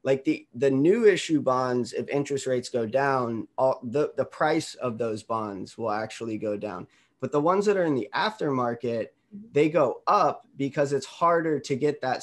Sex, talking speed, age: male, 190 wpm, 20-39